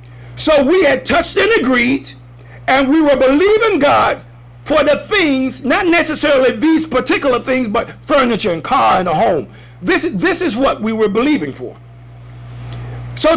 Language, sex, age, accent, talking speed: English, male, 50-69, American, 155 wpm